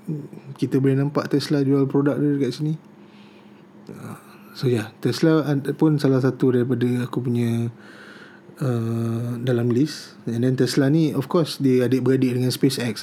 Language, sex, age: Malay, male, 20-39